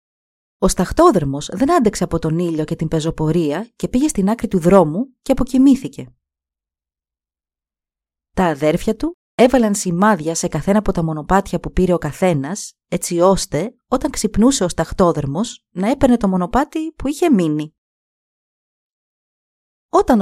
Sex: female